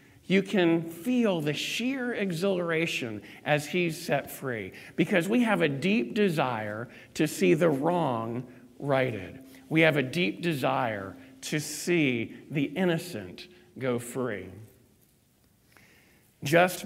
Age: 50-69